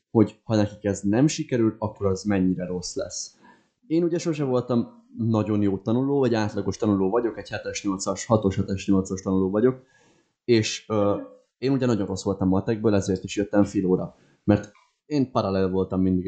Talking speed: 175 wpm